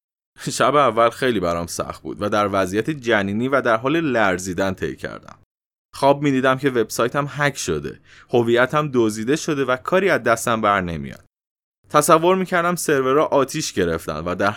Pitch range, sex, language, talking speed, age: 115-160 Hz, male, Persian, 160 wpm, 20-39